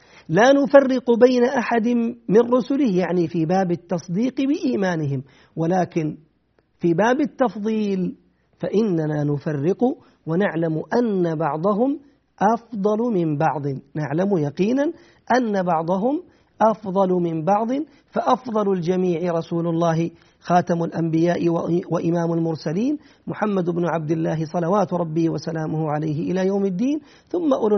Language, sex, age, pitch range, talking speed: Arabic, male, 50-69, 165-230 Hz, 110 wpm